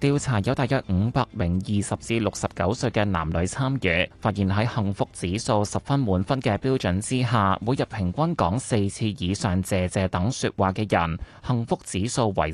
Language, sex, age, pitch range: Chinese, male, 20-39, 95-125 Hz